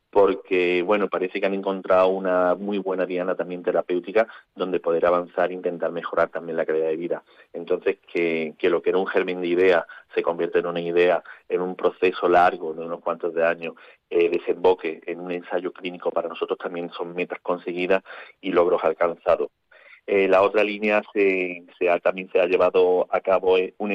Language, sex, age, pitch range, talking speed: Spanish, male, 40-59, 85-100 Hz, 185 wpm